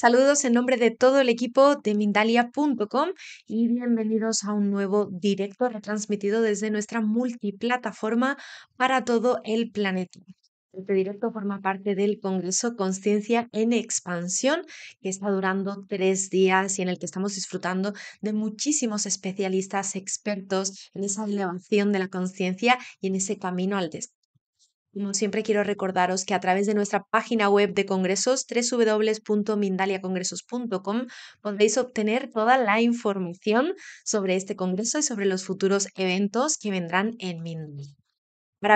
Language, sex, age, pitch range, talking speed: Spanish, female, 20-39, 190-230 Hz, 140 wpm